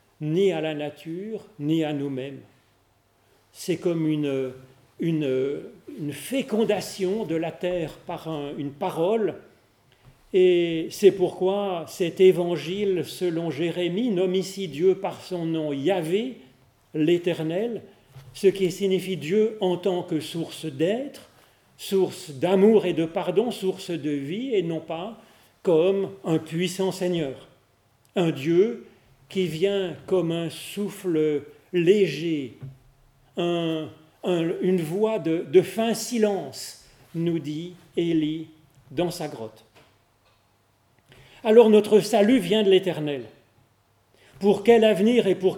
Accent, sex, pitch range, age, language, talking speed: French, male, 145-195 Hz, 40-59, French, 120 wpm